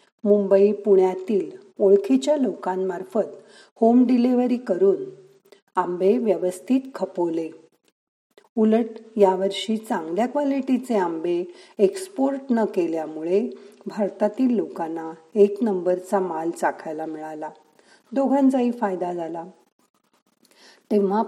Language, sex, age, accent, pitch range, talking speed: Marathi, female, 50-69, native, 185-240 Hz, 80 wpm